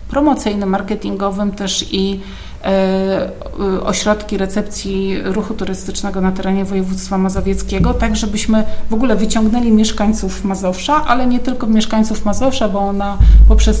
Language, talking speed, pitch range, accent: Polish, 115 wpm, 190-210 Hz, native